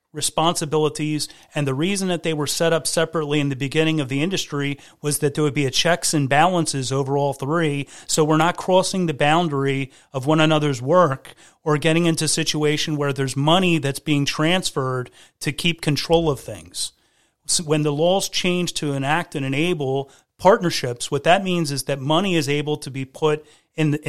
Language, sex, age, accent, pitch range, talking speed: English, male, 30-49, American, 140-165 Hz, 190 wpm